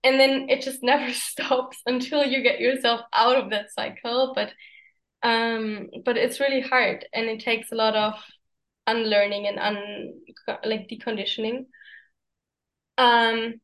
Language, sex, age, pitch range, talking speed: English, female, 10-29, 220-255 Hz, 135 wpm